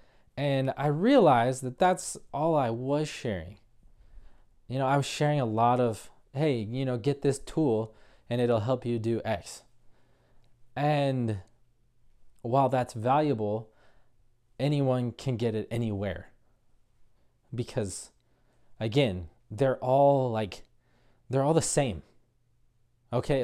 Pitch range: 120-155 Hz